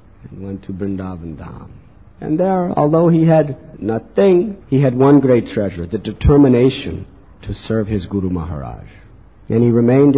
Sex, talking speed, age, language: male, 155 wpm, 50-69, English